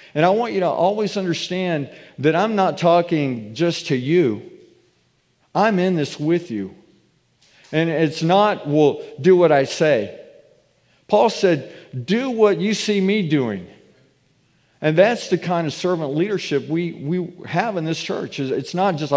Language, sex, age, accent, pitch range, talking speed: English, male, 50-69, American, 135-180 Hz, 160 wpm